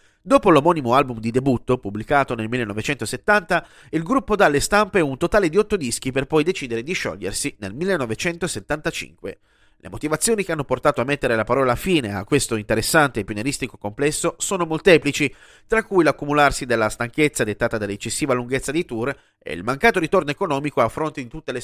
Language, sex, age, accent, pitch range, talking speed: Italian, male, 30-49, native, 125-170 Hz, 175 wpm